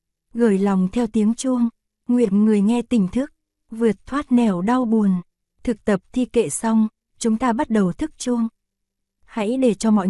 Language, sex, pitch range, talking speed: Vietnamese, female, 200-235 Hz, 180 wpm